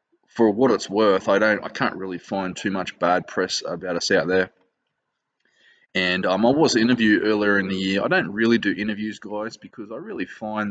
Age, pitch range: 20-39, 95-105 Hz